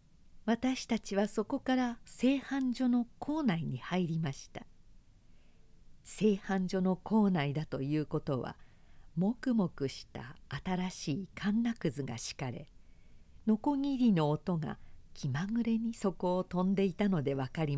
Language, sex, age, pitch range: Japanese, female, 50-69, 150-230 Hz